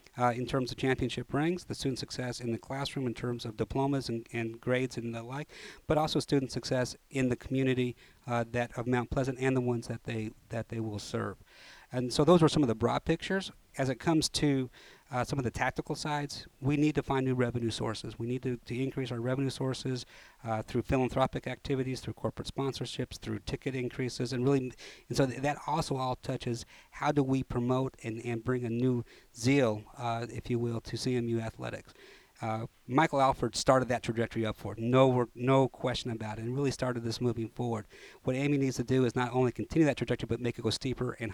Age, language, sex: 50-69, English, male